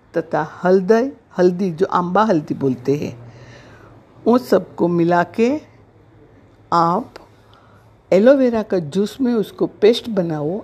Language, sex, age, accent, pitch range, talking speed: Hindi, female, 60-79, native, 145-195 Hz, 115 wpm